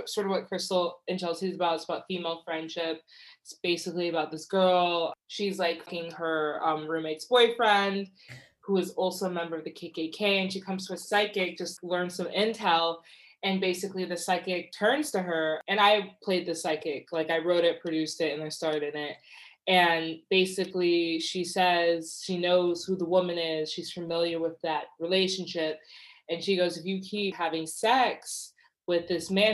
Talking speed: 185 wpm